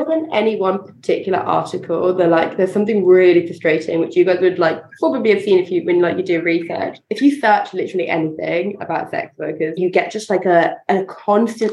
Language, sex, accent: English, female, British